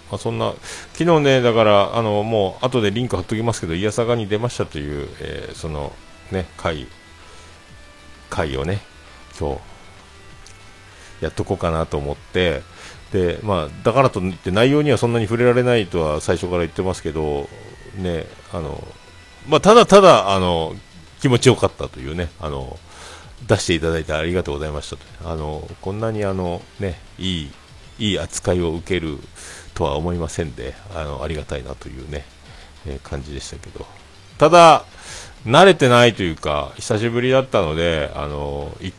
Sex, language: male, Japanese